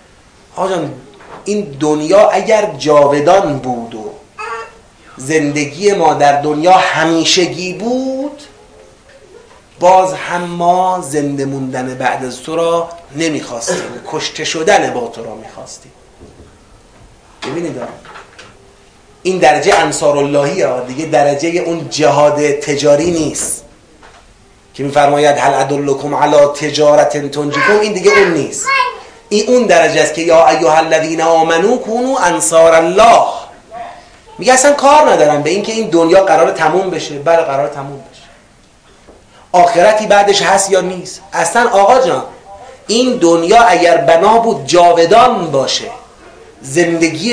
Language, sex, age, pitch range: Persian, male, 30-49, 150-210 Hz